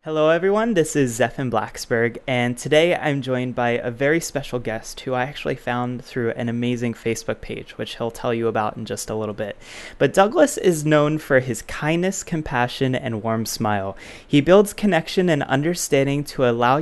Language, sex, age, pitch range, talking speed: English, male, 20-39, 120-155 Hz, 185 wpm